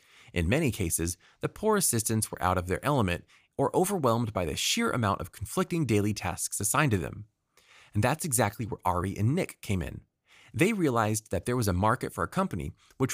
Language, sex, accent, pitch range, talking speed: English, male, American, 95-140 Hz, 200 wpm